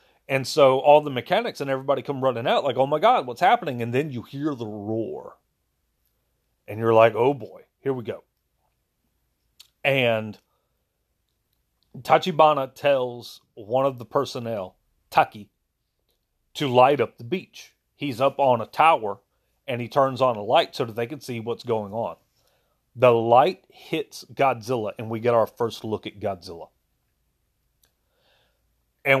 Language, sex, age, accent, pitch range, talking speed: English, male, 40-59, American, 110-135 Hz, 155 wpm